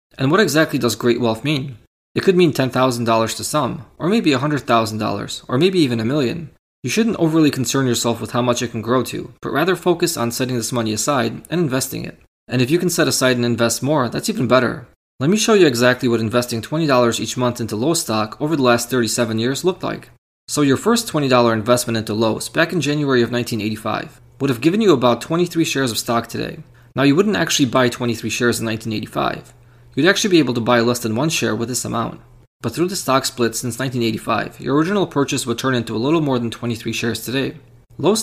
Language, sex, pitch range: English, male, 115-150 Hz